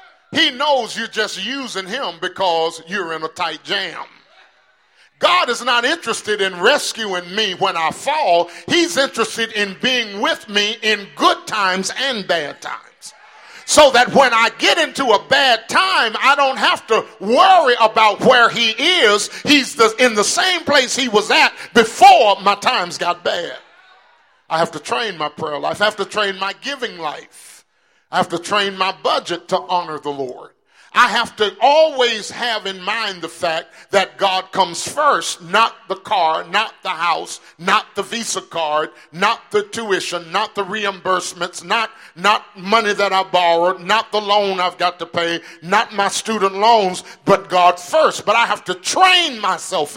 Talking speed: 175 wpm